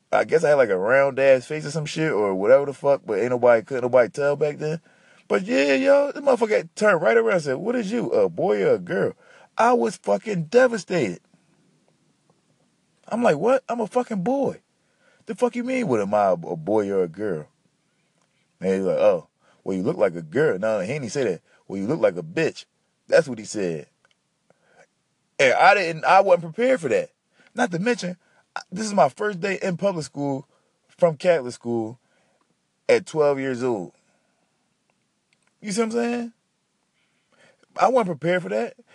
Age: 20-39